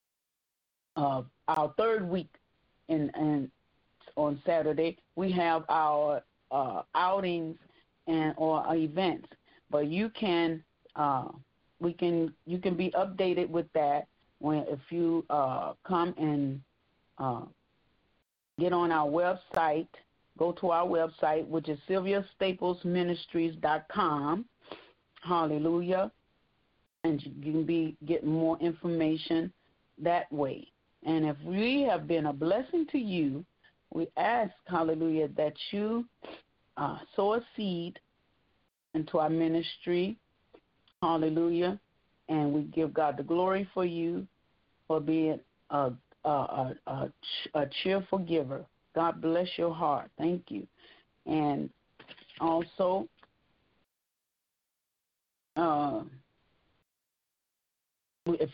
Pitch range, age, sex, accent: 155-180 Hz, 40-59, female, American